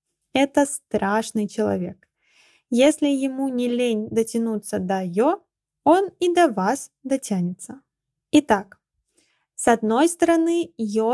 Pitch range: 215-280 Hz